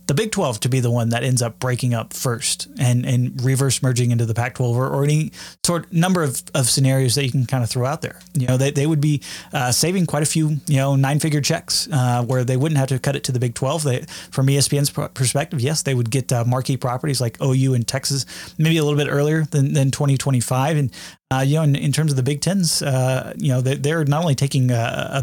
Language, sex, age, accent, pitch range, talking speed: English, male, 20-39, American, 130-150 Hz, 265 wpm